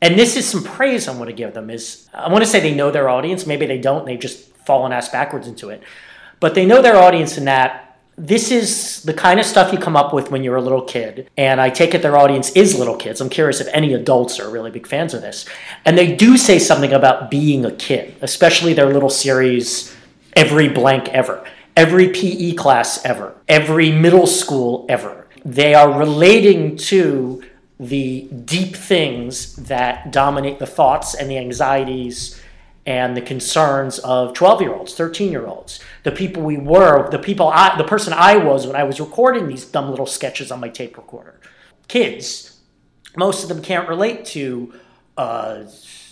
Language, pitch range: English, 130-175 Hz